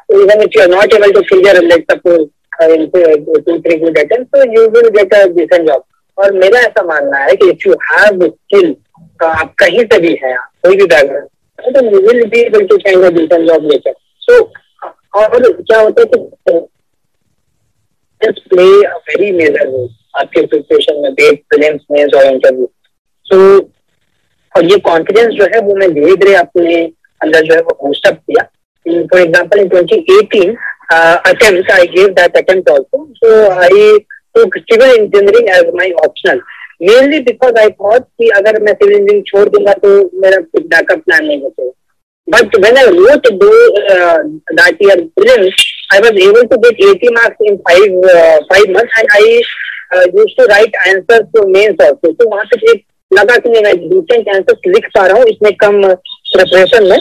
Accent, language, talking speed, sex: Indian, English, 145 wpm, female